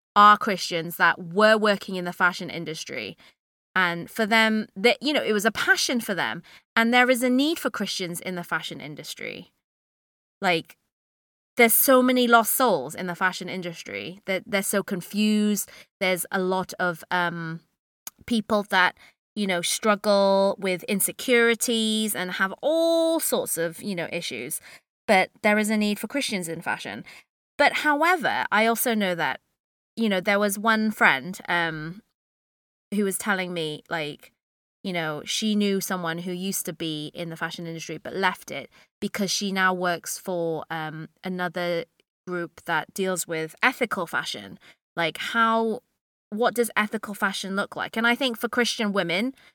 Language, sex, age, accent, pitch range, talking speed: English, female, 20-39, British, 175-225 Hz, 165 wpm